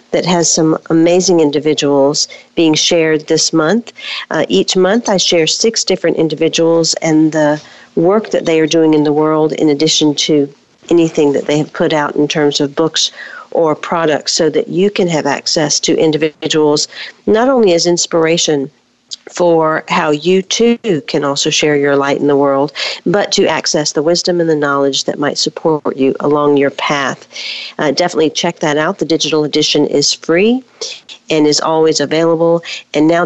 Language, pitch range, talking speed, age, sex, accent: English, 150-175 Hz, 175 wpm, 50-69, female, American